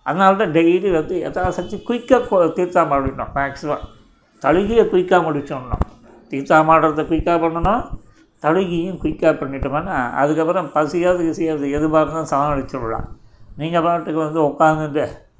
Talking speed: 110 wpm